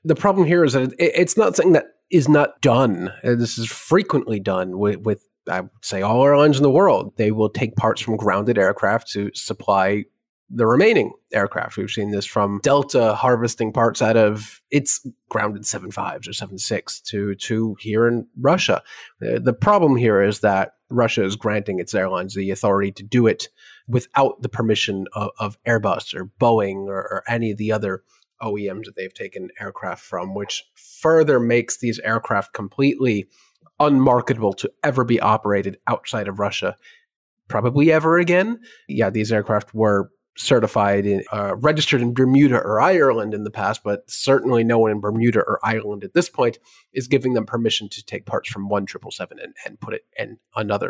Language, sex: English, male